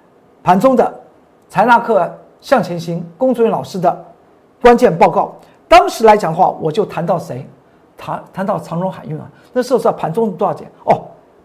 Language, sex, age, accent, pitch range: Chinese, male, 50-69, native, 175-245 Hz